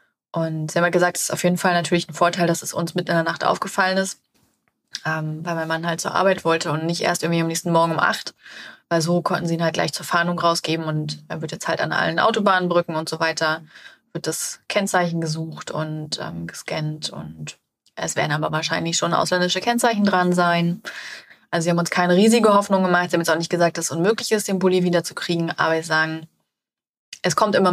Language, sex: German, female